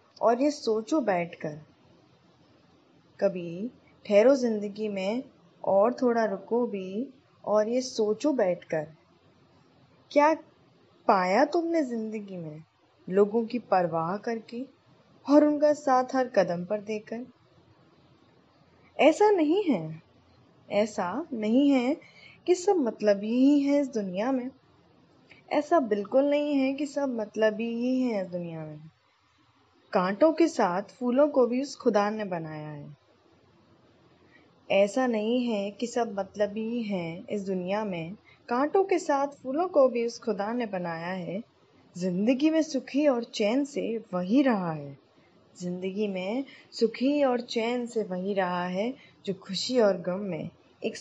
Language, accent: Hindi, native